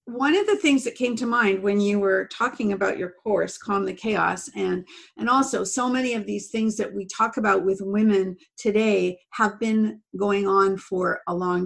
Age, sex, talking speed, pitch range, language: 50-69, female, 205 wpm, 180-230 Hz, English